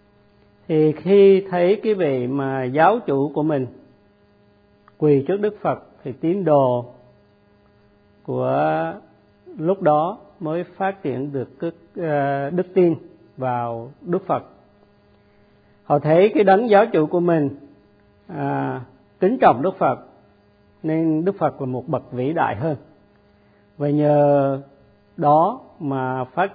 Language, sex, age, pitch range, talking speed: Vietnamese, male, 50-69, 105-155 Hz, 130 wpm